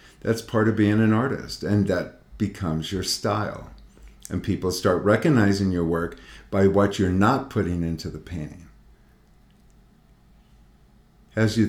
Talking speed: 140 wpm